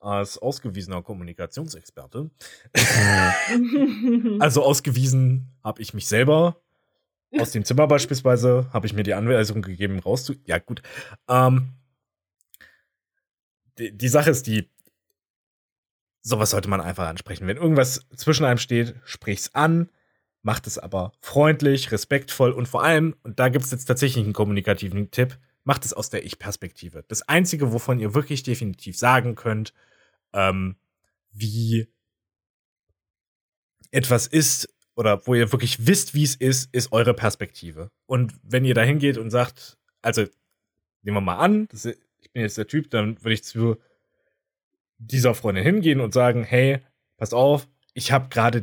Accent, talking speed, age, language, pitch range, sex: German, 145 wpm, 30-49, German, 105-130 Hz, male